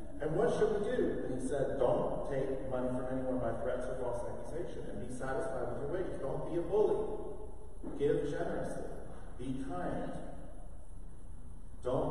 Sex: male